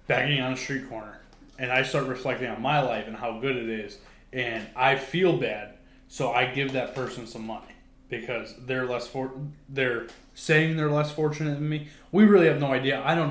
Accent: American